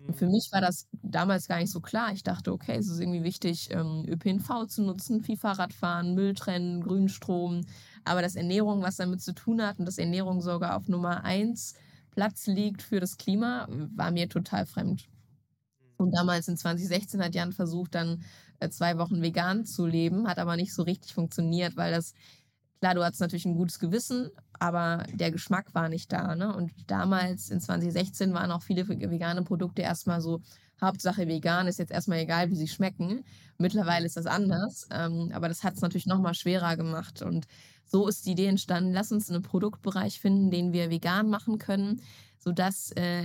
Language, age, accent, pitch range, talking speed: German, 20-39, German, 170-195 Hz, 185 wpm